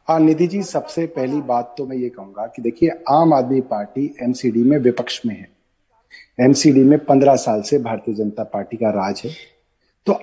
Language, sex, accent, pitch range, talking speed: Hindi, male, native, 170-250 Hz, 180 wpm